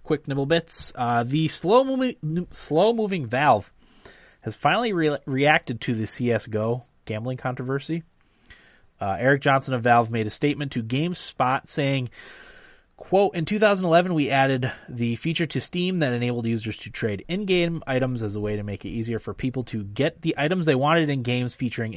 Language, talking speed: English, 165 wpm